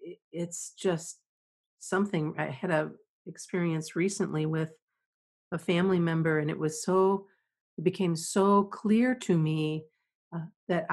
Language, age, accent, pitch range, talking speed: English, 40-59, American, 160-205 Hz, 130 wpm